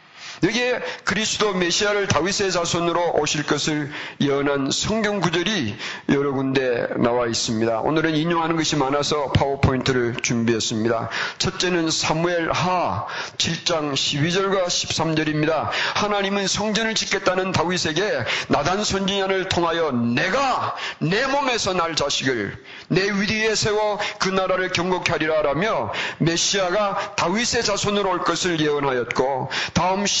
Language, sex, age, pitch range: Korean, male, 40-59, 150-200 Hz